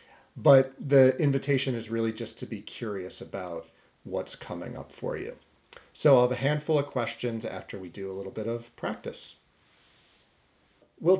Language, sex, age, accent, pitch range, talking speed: English, male, 40-59, American, 110-145 Hz, 165 wpm